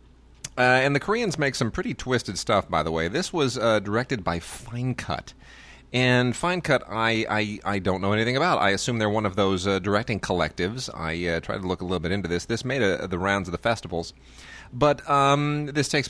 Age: 30-49